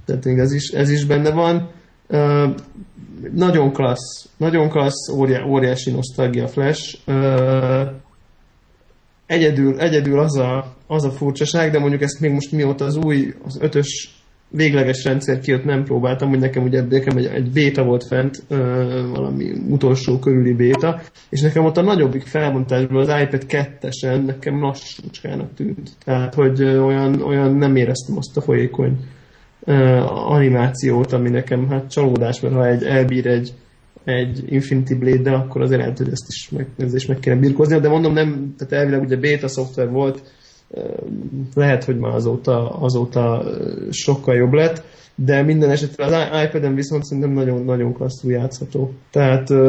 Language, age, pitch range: Hungarian, 20-39, 130-145 Hz